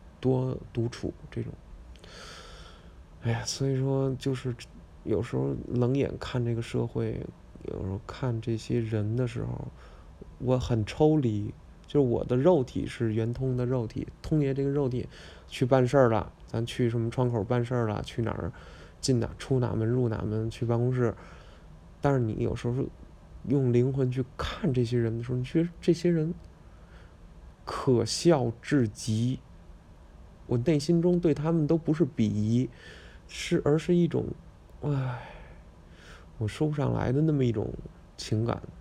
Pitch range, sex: 105-140 Hz, male